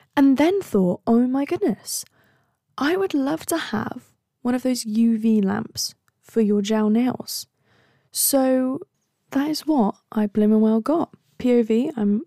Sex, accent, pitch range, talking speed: female, British, 190-245 Hz, 145 wpm